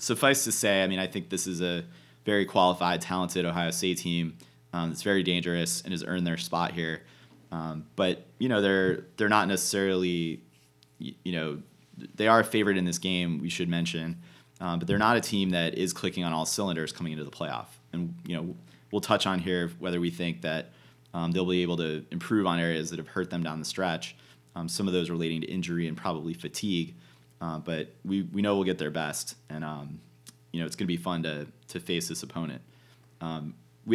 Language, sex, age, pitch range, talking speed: English, male, 30-49, 80-90 Hz, 215 wpm